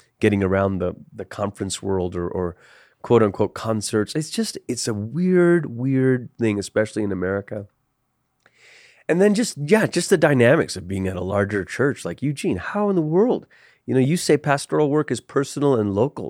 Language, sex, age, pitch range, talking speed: English, male, 30-49, 100-130 Hz, 185 wpm